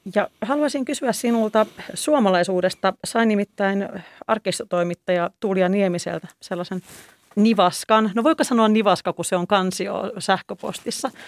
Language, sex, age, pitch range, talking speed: Finnish, female, 40-59, 175-215 Hz, 110 wpm